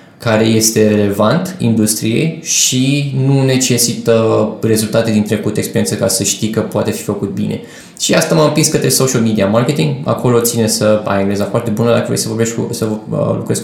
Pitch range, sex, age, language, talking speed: 105-120 Hz, male, 20-39, Romanian, 180 wpm